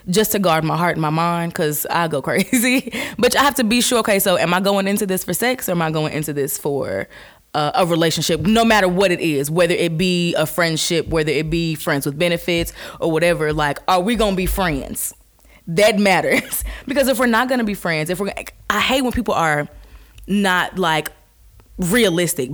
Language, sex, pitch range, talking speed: English, female, 170-230 Hz, 220 wpm